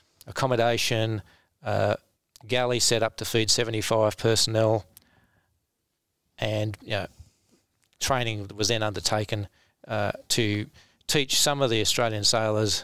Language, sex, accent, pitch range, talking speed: English, male, Australian, 105-115 Hz, 105 wpm